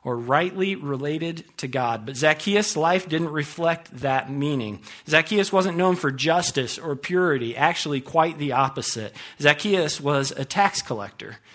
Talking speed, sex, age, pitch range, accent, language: 145 wpm, male, 40-59, 130-165 Hz, American, English